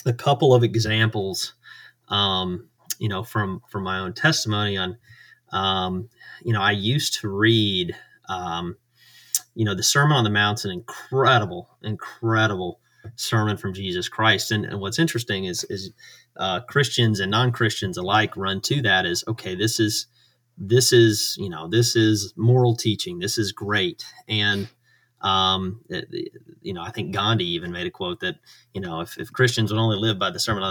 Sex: male